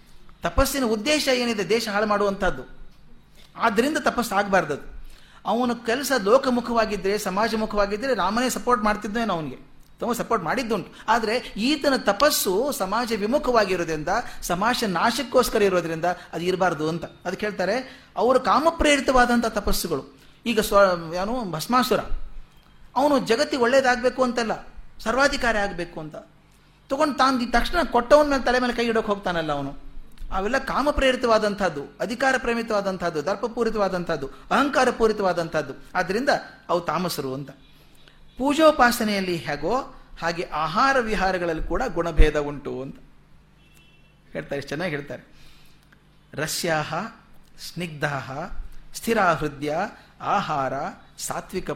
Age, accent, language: 30-49, native, Kannada